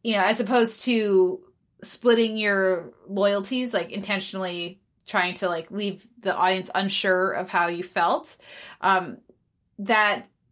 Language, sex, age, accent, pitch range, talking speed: English, female, 20-39, American, 185-220 Hz, 130 wpm